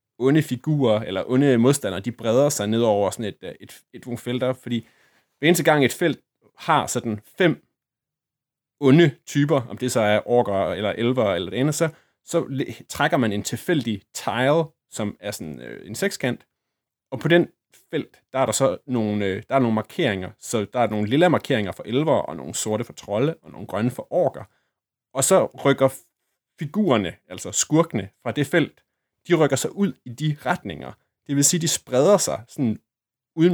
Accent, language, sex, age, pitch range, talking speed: native, Danish, male, 30-49, 110-145 Hz, 190 wpm